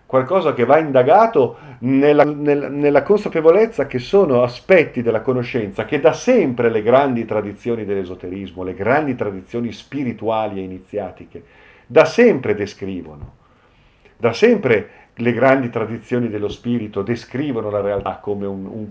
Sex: male